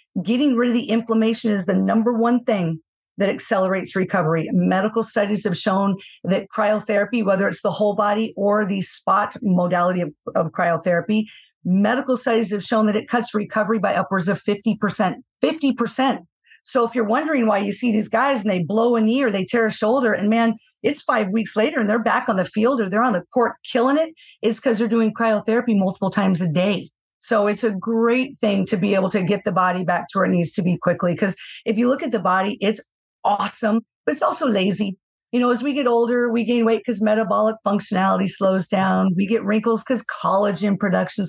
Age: 40-59